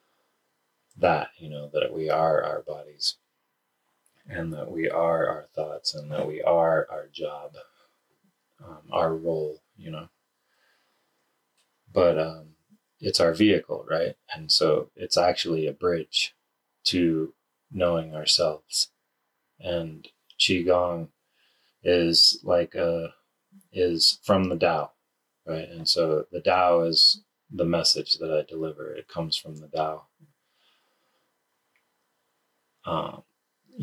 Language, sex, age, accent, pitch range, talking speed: English, male, 30-49, American, 80-90 Hz, 115 wpm